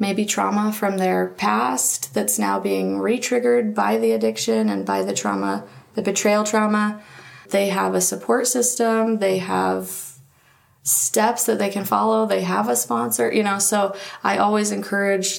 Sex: female